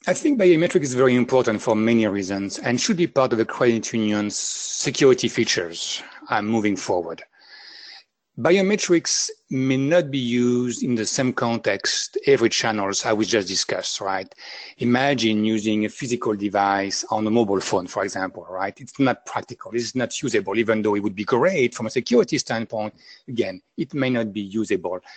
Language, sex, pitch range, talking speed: English, male, 105-135 Hz, 170 wpm